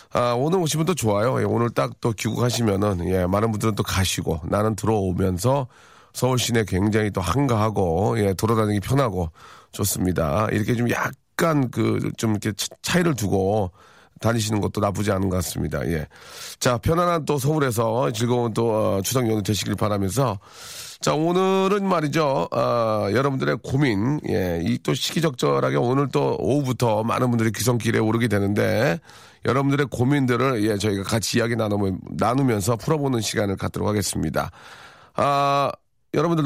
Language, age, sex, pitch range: Korean, 40-59, male, 105-140 Hz